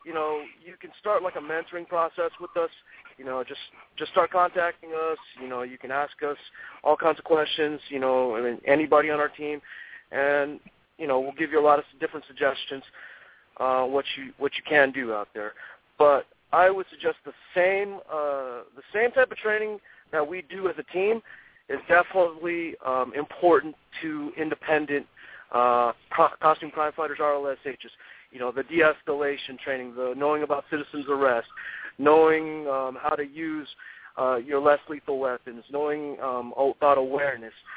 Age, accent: 30-49, American